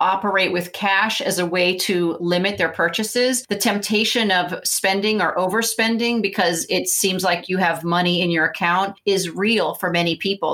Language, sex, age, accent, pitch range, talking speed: English, female, 40-59, American, 175-210 Hz, 175 wpm